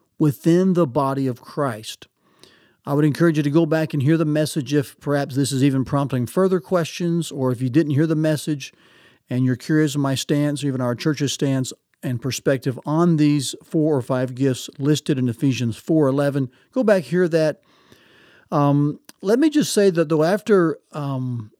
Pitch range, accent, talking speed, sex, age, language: 135-170 Hz, American, 185 wpm, male, 50-69, English